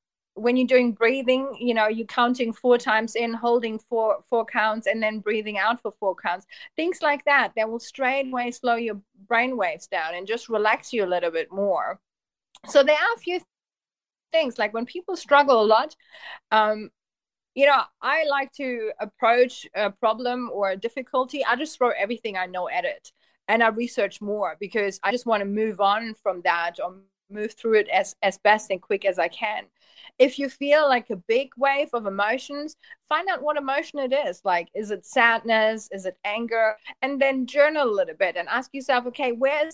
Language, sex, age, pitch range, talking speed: English, female, 30-49, 210-270 Hz, 200 wpm